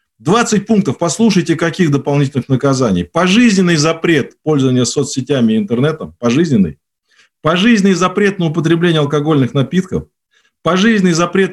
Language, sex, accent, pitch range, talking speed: Russian, male, native, 135-185 Hz, 110 wpm